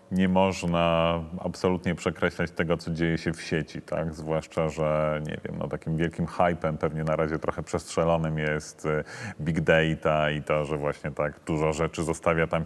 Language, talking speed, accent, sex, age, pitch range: Polish, 170 wpm, native, male, 30-49, 80-95 Hz